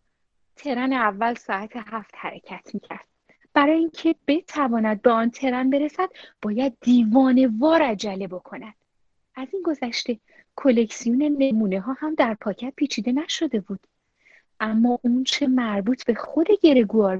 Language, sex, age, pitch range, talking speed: Persian, female, 30-49, 225-290 Hz, 130 wpm